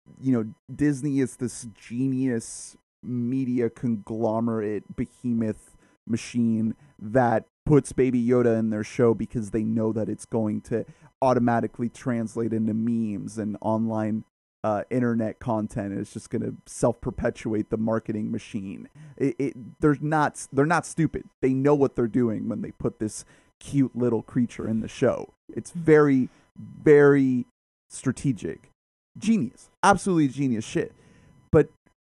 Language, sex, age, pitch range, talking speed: English, male, 30-49, 110-140 Hz, 135 wpm